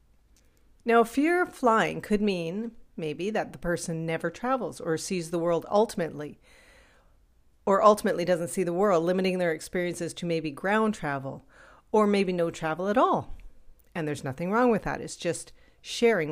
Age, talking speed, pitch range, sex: 40-59, 165 wpm, 165-210 Hz, female